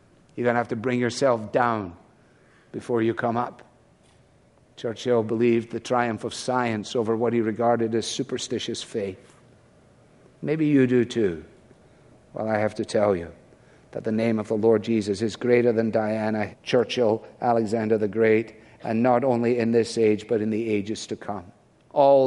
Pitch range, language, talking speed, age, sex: 115-145 Hz, English, 165 wpm, 50-69, male